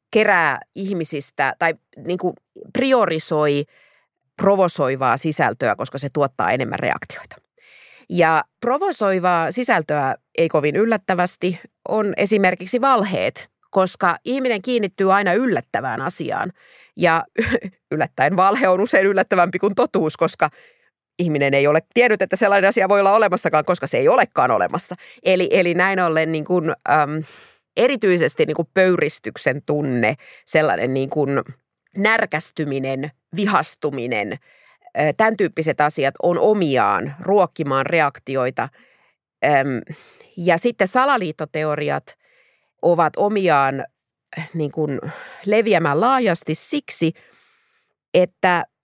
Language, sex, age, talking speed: Finnish, female, 30-49, 105 wpm